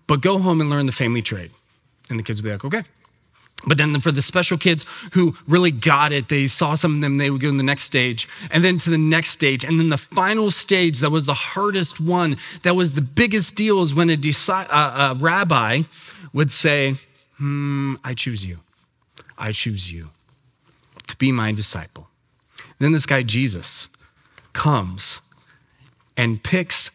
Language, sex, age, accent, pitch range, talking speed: English, male, 30-49, American, 120-160 Hz, 185 wpm